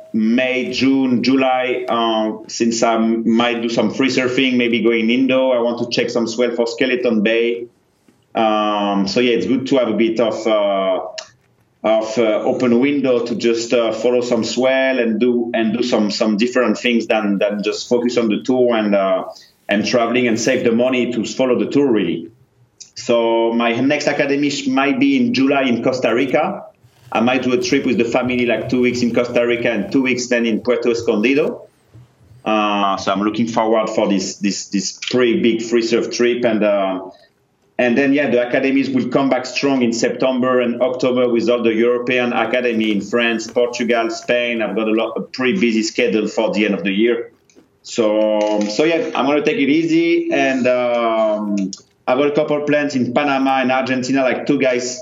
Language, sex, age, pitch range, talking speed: English, male, 30-49, 115-135 Hz, 195 wpm